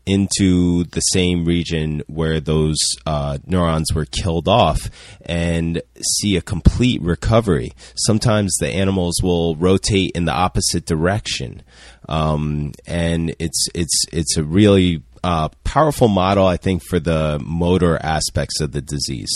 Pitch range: 80-95 Hz